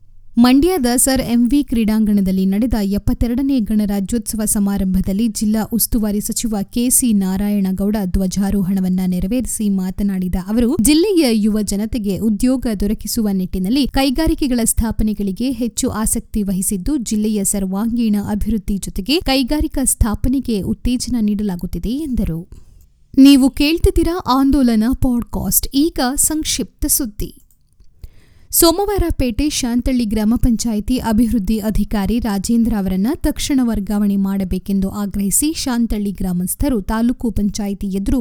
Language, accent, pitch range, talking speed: Kannada, native, 200-250 Hz, 100 wpm